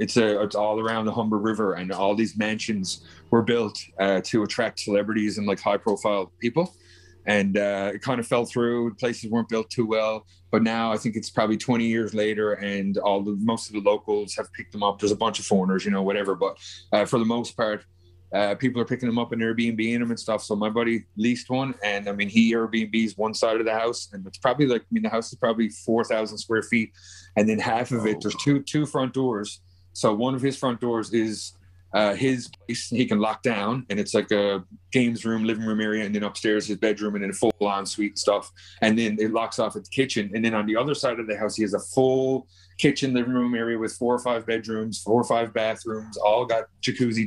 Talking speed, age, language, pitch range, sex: 240 wpm, 30-49, English, 100-115 Hz, male